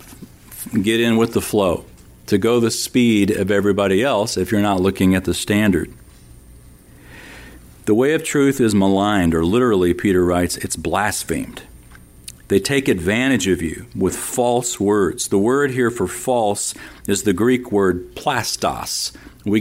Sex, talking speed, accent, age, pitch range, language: male, 155 wpm, American, 50-69, 90-120 Hz, English